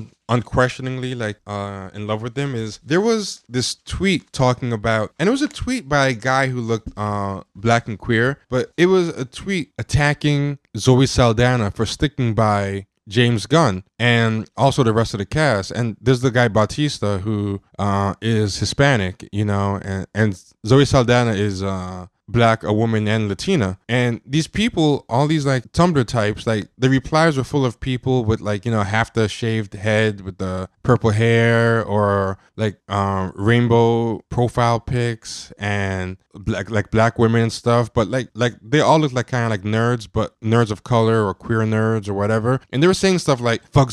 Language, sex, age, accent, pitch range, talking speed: English, male, 20-39, American, 110-135 Hz, 185 wpm